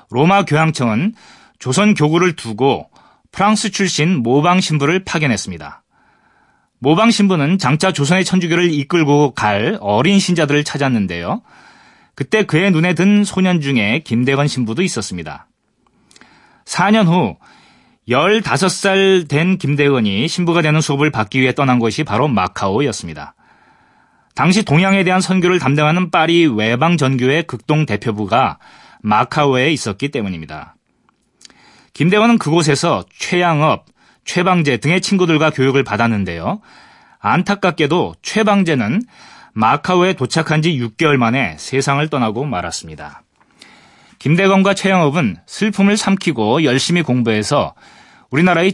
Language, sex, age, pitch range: Korean, male, 30-49, 135-185 Hz